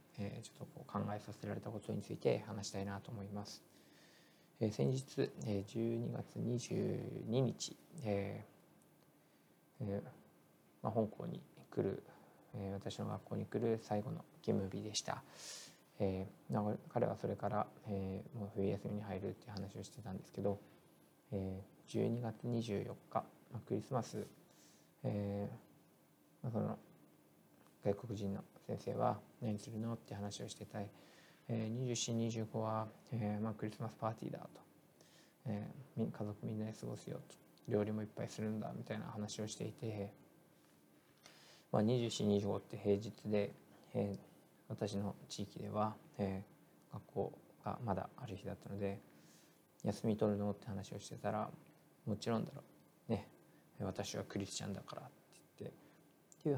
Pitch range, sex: 100-110 Hz, male